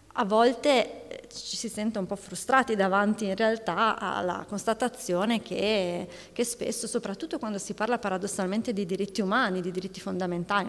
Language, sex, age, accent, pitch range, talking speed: Italian, female, 30-49, native, 185-225 Hz, 150 wpm